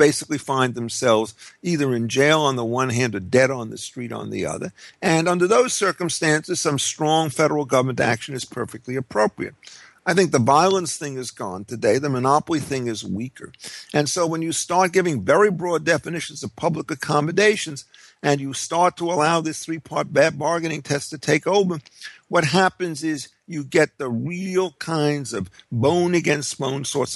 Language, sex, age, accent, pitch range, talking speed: English, male, 50-69, American, 120-155 Hz, 170 wpm